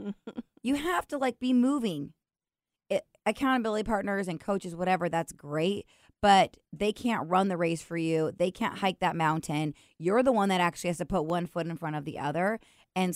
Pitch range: 165-205 Hz